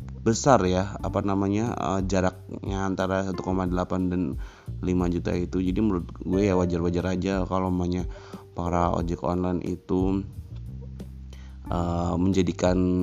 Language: Indonesian